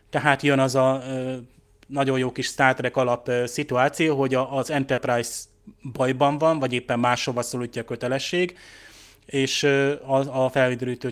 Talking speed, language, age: 150 wpm, Hungarian, 30-49